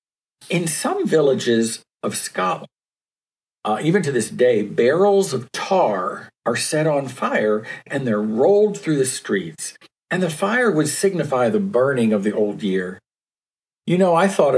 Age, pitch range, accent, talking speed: 50-69, 105-170 Hz, American, 155 wpm